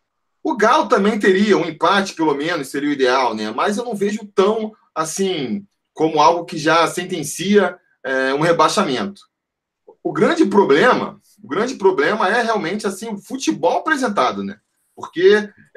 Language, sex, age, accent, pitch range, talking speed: Portuguese, male, 20-39, Brazilian, 160-210 Hz, 150 wpm